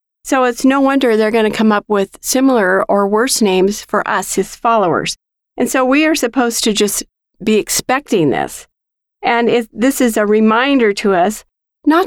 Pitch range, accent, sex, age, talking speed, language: 210-275 Hz, American, female, 50-69, 185 wpm, English